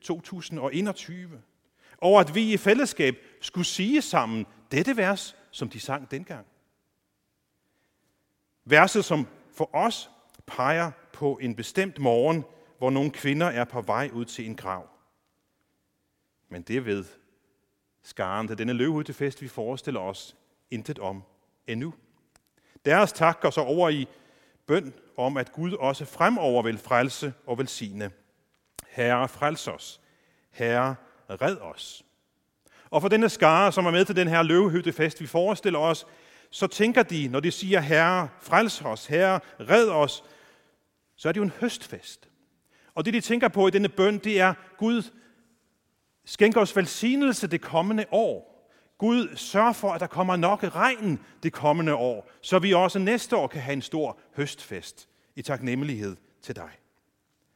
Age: 40-59